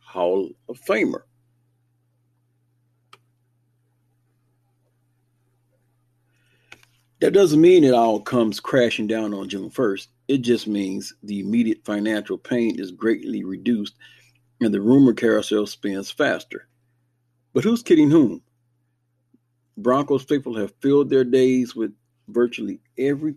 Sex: male